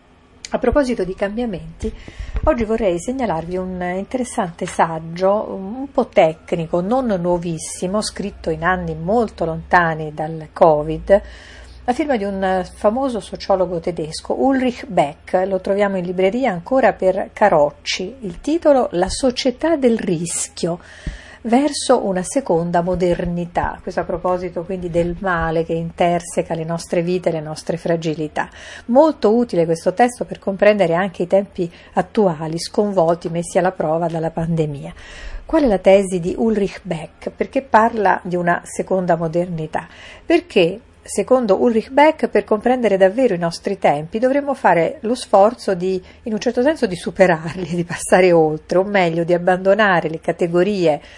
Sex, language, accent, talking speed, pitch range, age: female, Italian, native, 145 wpm, 170-220 Hz, 50-69